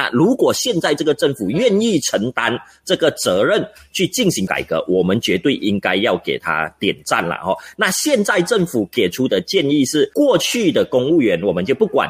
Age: 30-49